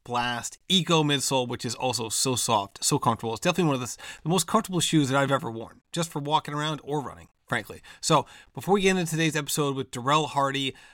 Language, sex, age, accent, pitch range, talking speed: English, male, 30-49, American, 115-150 Hz, 215 wpm